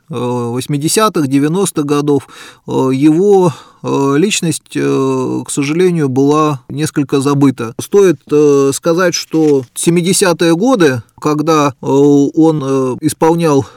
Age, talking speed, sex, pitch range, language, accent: 30-49, 80 wpm, male, 140-165 Hz, Russian, native